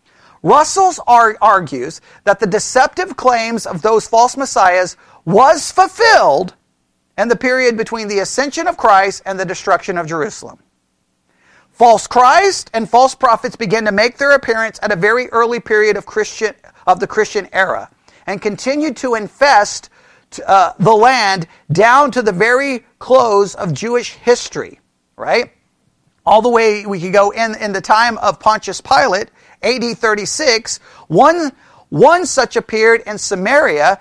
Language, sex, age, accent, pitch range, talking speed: English, male, 40-59, American, 200-255 Hz, 145 wpm